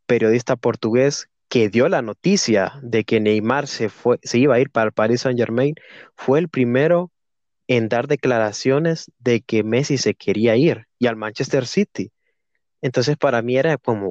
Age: 20-39